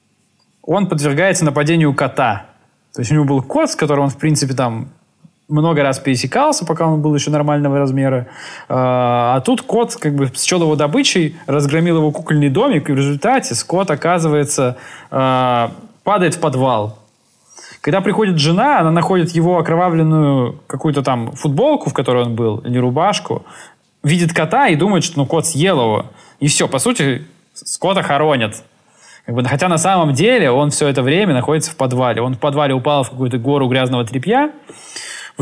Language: Russian